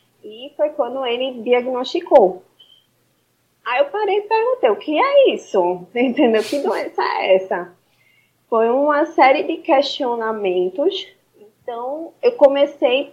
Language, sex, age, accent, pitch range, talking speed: Portuguese, female, 20-39, Brazilian, 190-285 Hz, 125 wpm